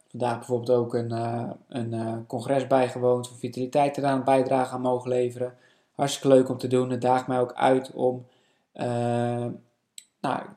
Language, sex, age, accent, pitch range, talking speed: Dutch, male, 20-39, Dutch, 120-130 Hz, 170 wpm